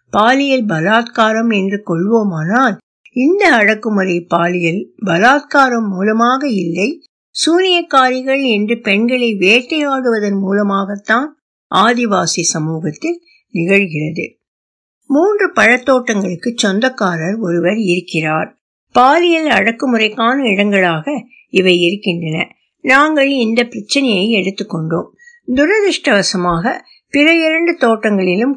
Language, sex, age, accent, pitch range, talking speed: Tamil, female, 60-79, native, 190-275 Hz, 75 wpm